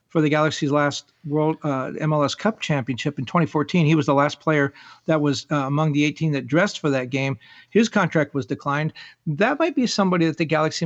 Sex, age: male, 50-69